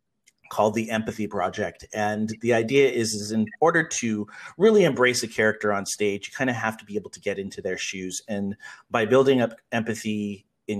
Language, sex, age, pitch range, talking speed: English, male, 40-59, 105-125 Hz, 200 wpm